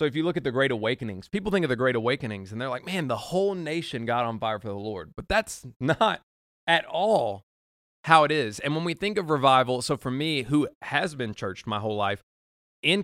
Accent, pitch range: American, 110-145 Hz